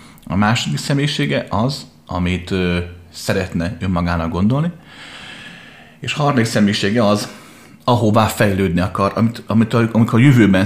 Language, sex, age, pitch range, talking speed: Hungarian, male, 30-49, 90-115 Hz, 130 wpm